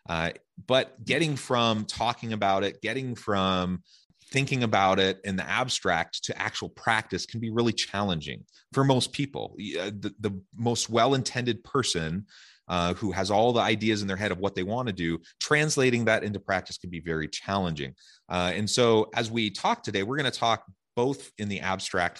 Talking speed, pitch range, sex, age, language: 185 wpm, 85-110 Hz, male, 30-49, English